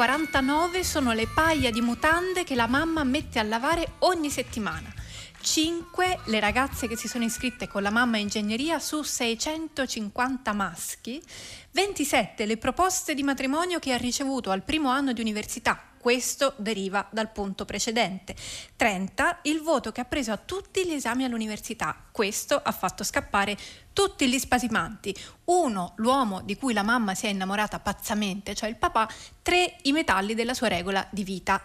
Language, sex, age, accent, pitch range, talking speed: Italian, female, 30-49, native, 210-275 Hz, 165 wpm